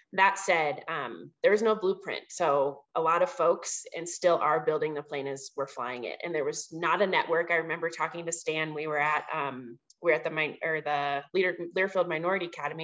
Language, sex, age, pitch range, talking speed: English, female, 20-39, 150-200 Hz, 215 wpm